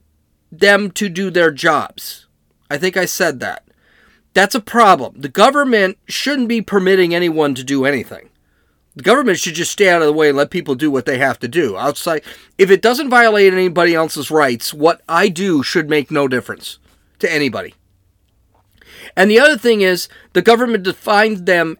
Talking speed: 180 wpm